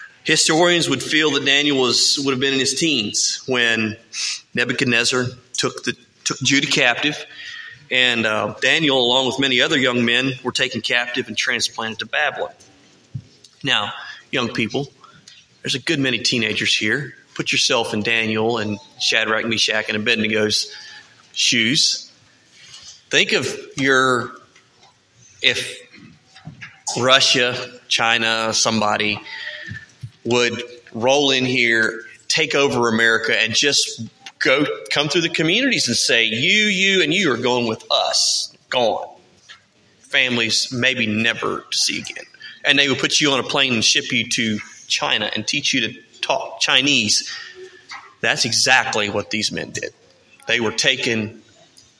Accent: American